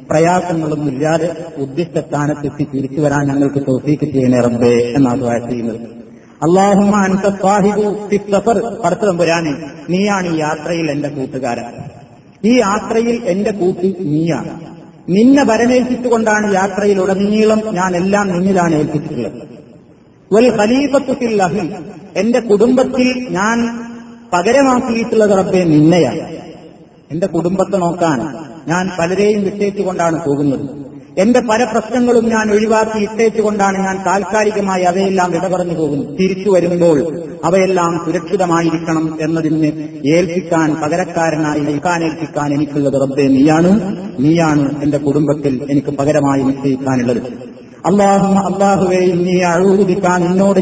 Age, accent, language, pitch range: 30-49, native, Malayalam, 150-200 Hz